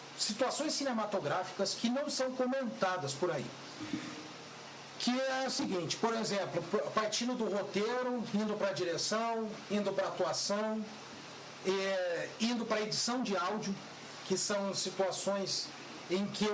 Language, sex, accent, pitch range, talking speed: Portuguese, male, Brazilian, 185-240 Hz, 130 wpm